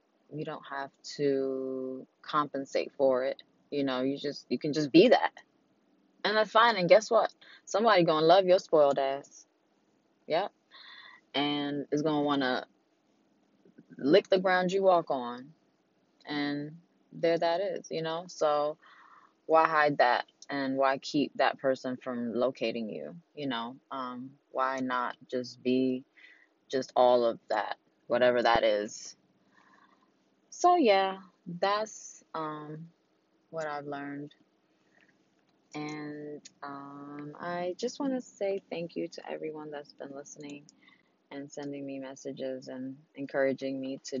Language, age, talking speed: Amharic, 20-39, 140 wpm